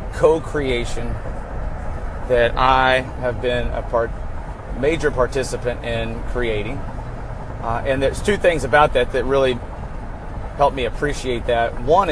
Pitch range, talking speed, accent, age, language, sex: 115-135 Hz, 125 wpm, American, 30-49, English, male